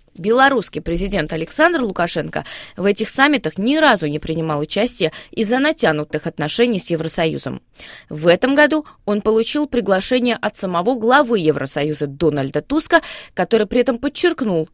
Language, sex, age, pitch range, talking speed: Russian, female, 20-39, 175-260 Hz, 135 wpm